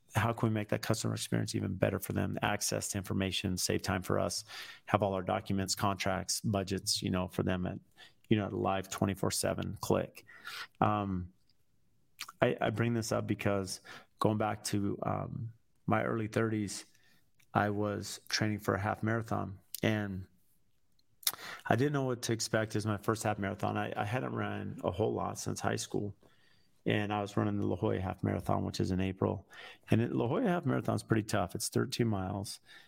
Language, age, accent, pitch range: English, 30-49, American, 95-110 Hz